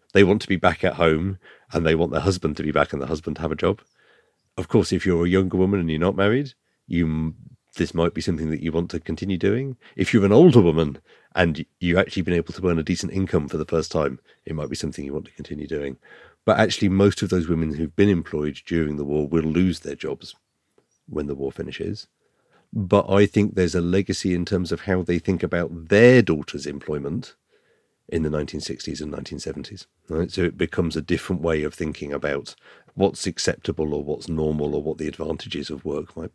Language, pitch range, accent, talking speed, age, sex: English, 80-95 Hz, British, 220 wpm, 40-59, male